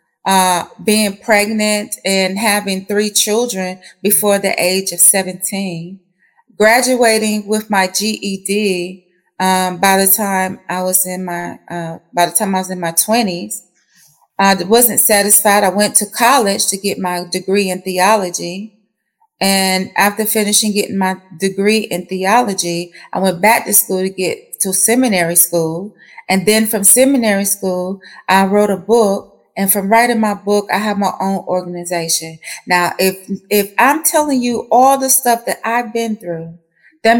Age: 30-49